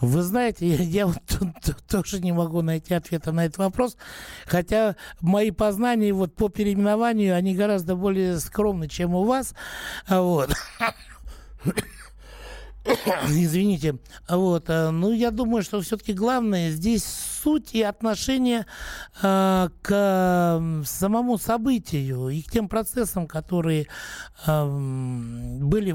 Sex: male